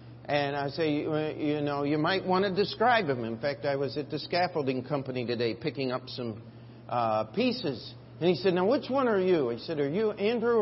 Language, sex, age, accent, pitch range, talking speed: English, male, 50-69, American, 120-190 Hz, 215 wpm